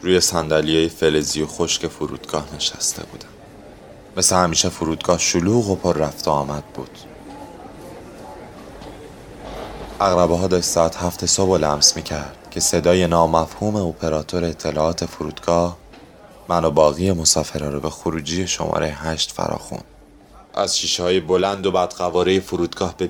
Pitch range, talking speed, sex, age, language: 80-95 Hz, 125 wpm, male, 30-49, English